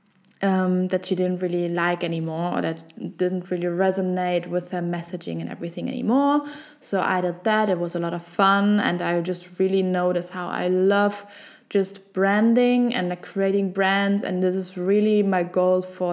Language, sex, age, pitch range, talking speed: English, female, 20-39, 180-215 Hz, 180 wpm